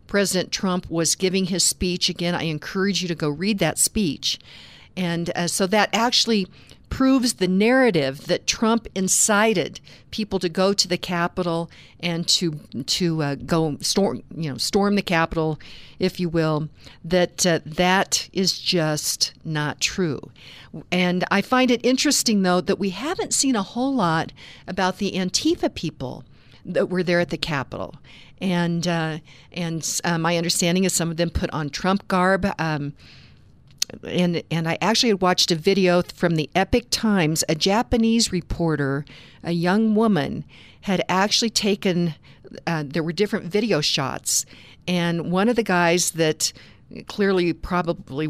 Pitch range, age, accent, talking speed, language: 160-195 Hz, 50-69, American, 155 wpm, English